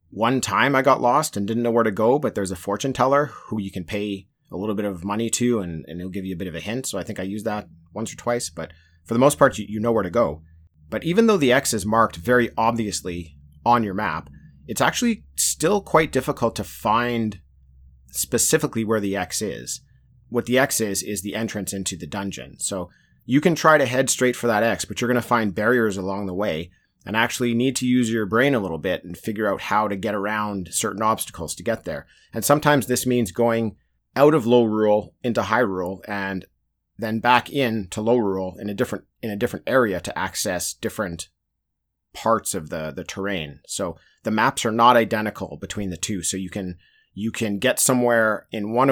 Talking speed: 225 wpm